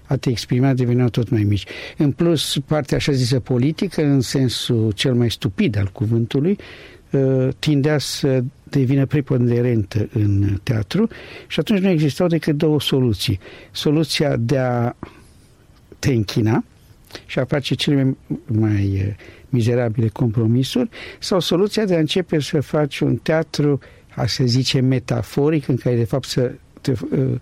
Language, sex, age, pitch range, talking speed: Romanian, male, 60-79, 115-150 Hz, 140 wpm